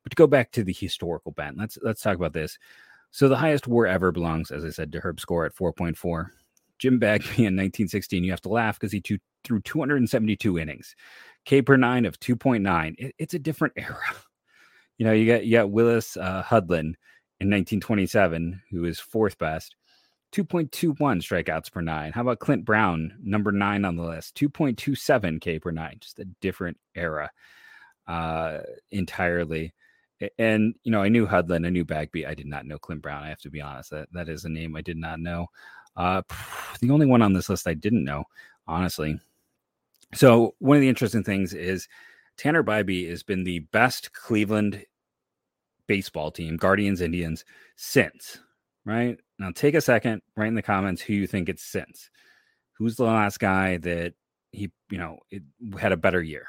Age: 30-49